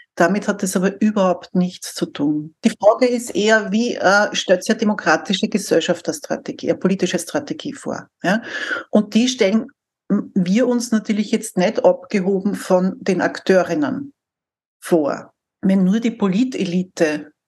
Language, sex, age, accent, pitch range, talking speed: German, female, 60-79, Austrian, 180-220 Hz, 140 wpm